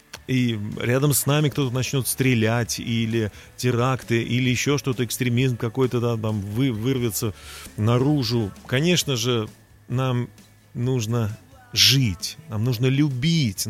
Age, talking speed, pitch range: 30-49, 125 wpm, 110-145 Hz